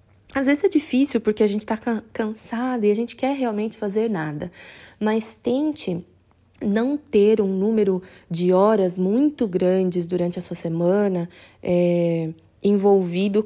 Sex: female